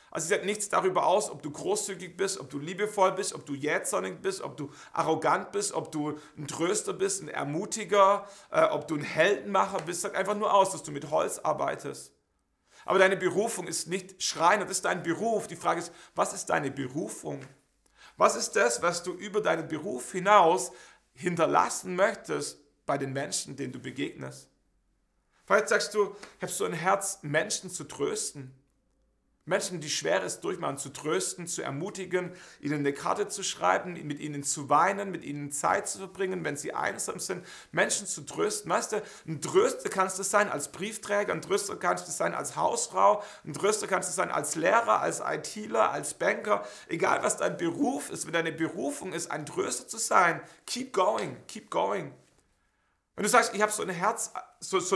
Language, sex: German, male